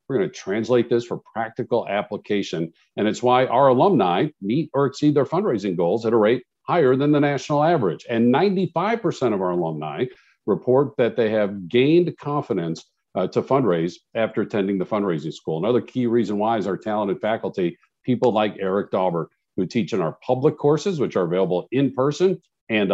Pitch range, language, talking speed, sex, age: 110-155 Hz, English, 180 wpm, male, 50-69